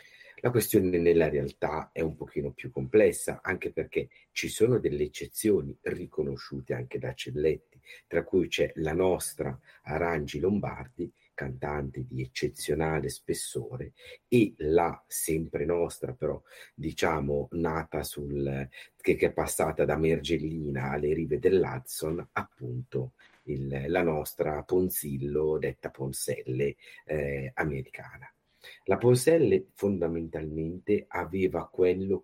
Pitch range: 70-95 Hz